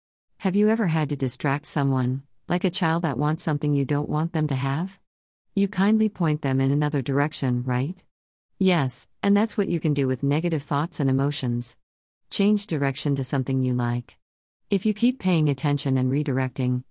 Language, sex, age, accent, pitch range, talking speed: English, female, 50-69, American, 130-170 Hz, 185 wpm